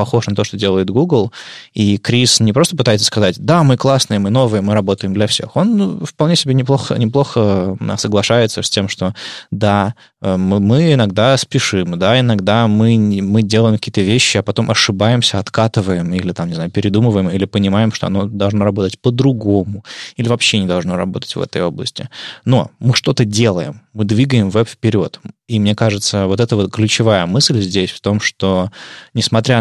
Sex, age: male, 20-39